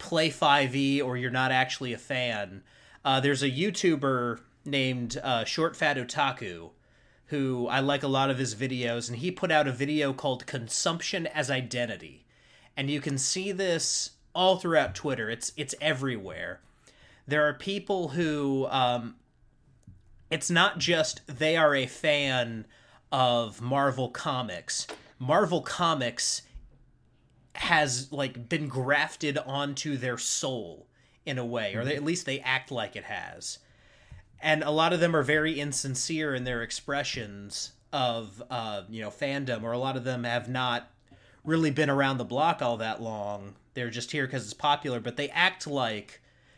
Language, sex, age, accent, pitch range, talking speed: English, male, 30-49, American, 120-150 Hz, 160 wpm